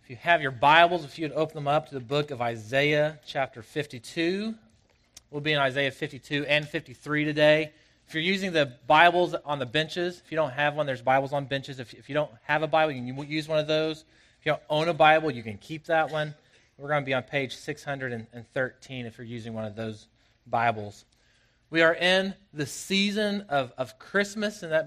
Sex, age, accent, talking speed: male, 30-49, American, 220 wpm